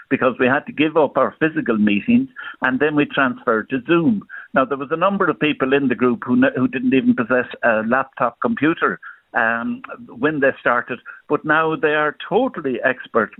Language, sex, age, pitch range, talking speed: English, male, 60-79, 130-190 Hz, 195 wpm